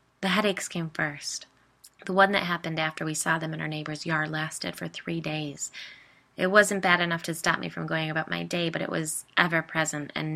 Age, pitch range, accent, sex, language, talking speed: 20-39, 150-175 Hz, American, female, English, 215 wpm